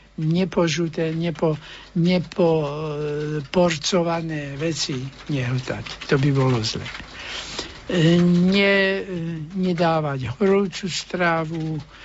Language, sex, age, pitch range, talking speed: Slovak, male, 60-79, 145-175 Hz, 75 wpm